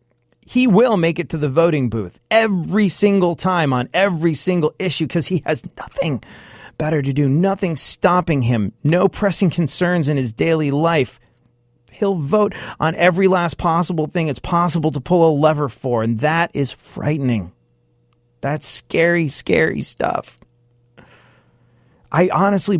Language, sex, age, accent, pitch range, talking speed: English, male, 40-59, American, 120-170 Hz, 145 wpm